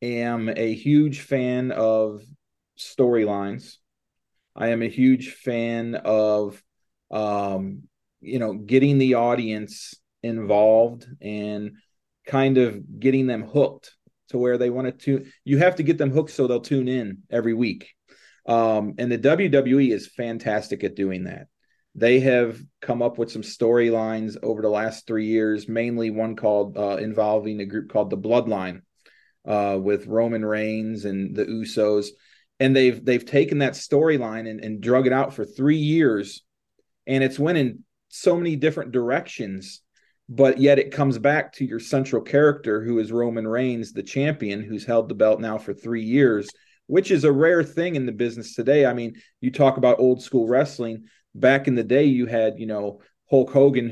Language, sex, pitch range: English, male, 110-130 Hz